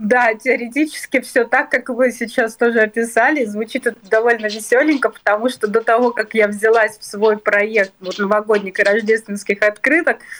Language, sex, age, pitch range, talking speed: Russian, female, 30-49, 195-230 Hz, 160 wpm